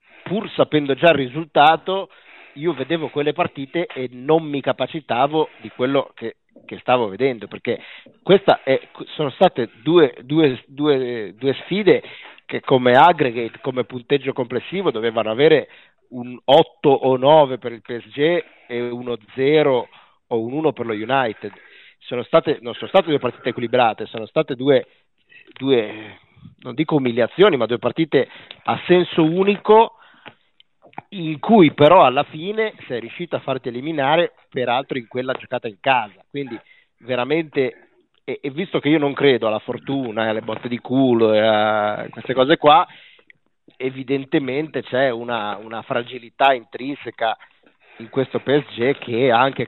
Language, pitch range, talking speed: Italian, 120-155 Hz, 145 wpm